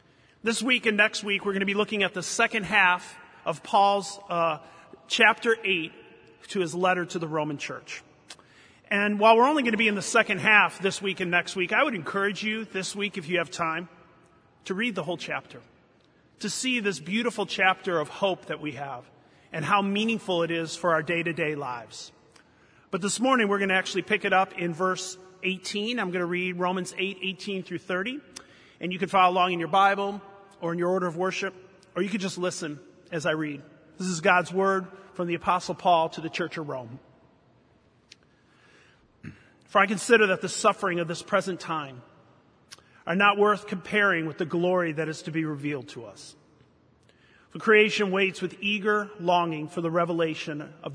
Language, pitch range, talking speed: English, 170-200 Hz, 195 wpm